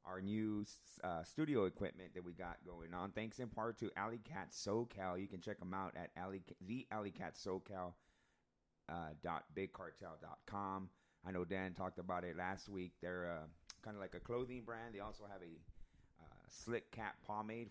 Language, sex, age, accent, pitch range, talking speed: English, male, 30-49, American, 90-110 Hz, 190 wpm